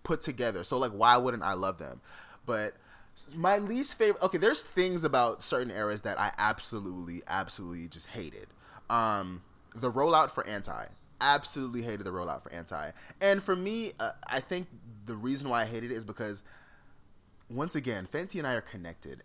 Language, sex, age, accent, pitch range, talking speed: English, male, 20-39, American, 105-150 Hz, 180 wpm